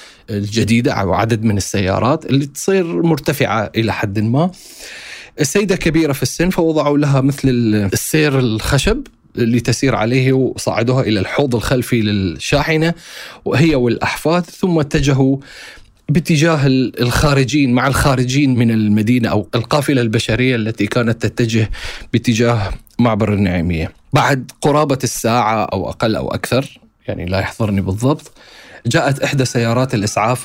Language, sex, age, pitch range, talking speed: Arabic, male, 30-49, 105-135 Hz, 120 wpm